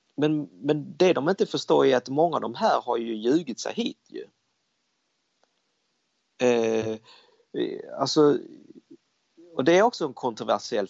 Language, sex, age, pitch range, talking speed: Swedish, male, 30-49, 125-210 Hz, 145 wpm